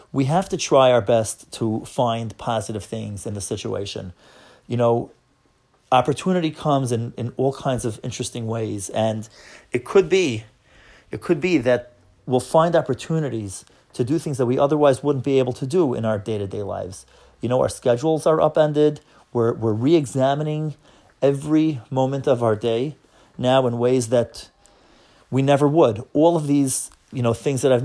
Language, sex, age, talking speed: English, male, 30-49, 170 wpm